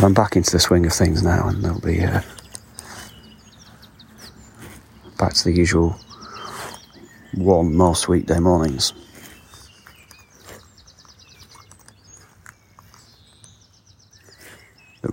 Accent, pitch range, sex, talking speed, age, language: British, 90-105 Hz, male, 85 wpm, 40-59, English